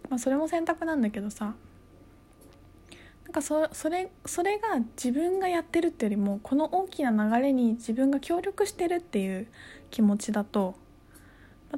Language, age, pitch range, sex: Japanese, 20-39, 185-260 Hz, female